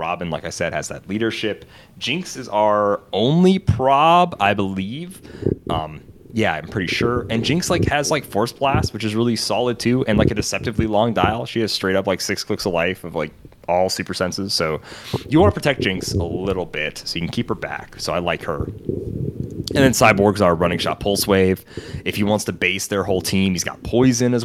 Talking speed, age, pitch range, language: 220 wpm, 30-49, 95-125 Hz, English